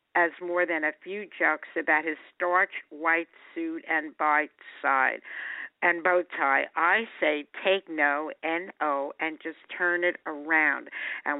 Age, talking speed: 60-79, 145 wpm